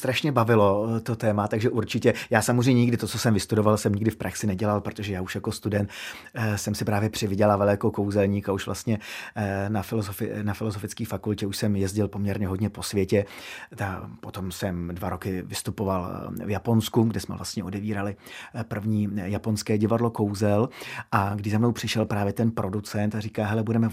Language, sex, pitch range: Czech, male, 105-120 Hz